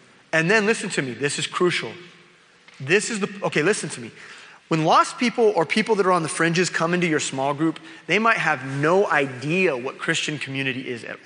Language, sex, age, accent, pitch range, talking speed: English, male, 30-49, American, 150-205 Hz, 215 wpm